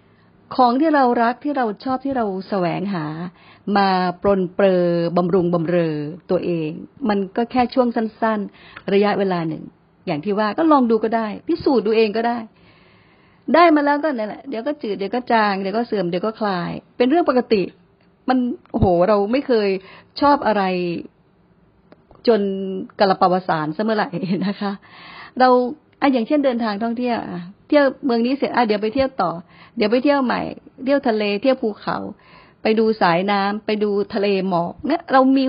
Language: Thai